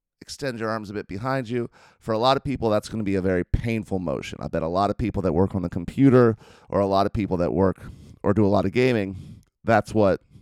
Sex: male